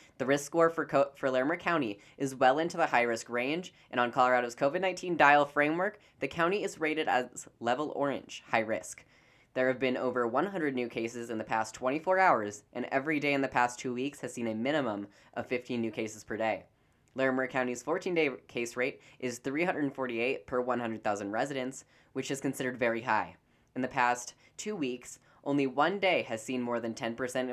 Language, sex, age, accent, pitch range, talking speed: English, female, 10-29, American, 120-150 Hz, 190 wpm